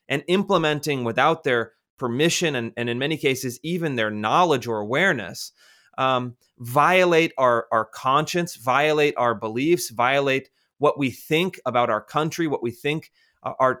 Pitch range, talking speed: 125-160 Hz, 150 wpm